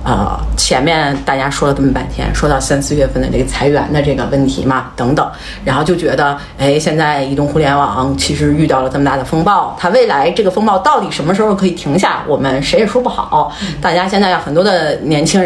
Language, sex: Chinese, female